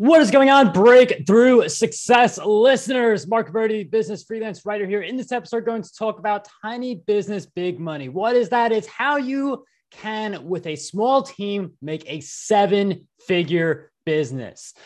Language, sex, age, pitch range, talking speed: English, male, 20-39, 155-220 Hz, 160 wpm